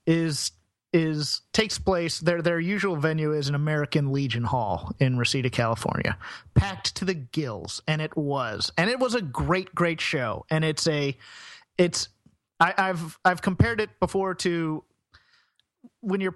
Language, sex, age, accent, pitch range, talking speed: English, male, 30-49, American, 145-180 Hz, 160 wpm